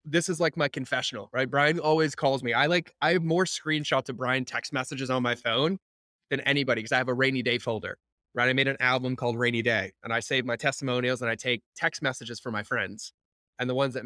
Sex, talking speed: male, 245 wpm